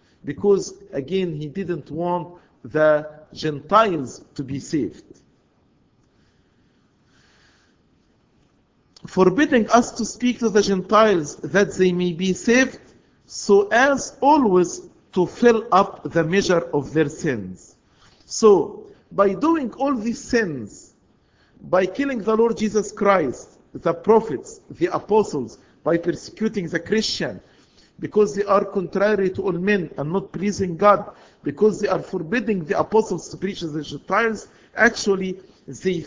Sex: male